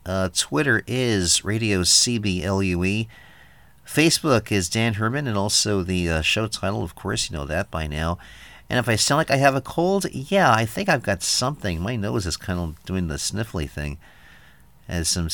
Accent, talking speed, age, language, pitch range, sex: American, 190 wpm, 50-69, English, 85-115 Hz, male